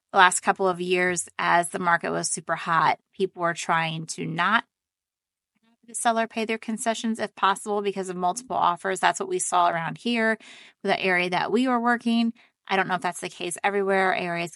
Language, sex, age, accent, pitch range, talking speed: English, female, 20-39, American, 170-210 Hz, 200 wpm